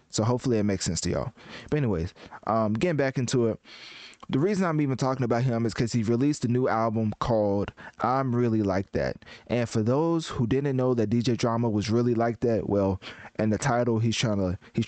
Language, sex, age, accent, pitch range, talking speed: English, male, 20-39, American, 105-125 Hz, 220 wpm